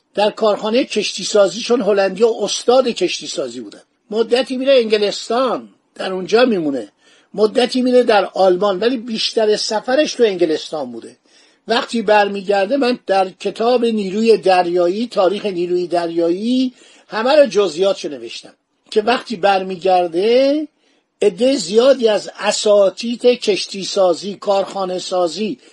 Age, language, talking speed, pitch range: 50-69, Persian, 120 wpm, 195-245 Hz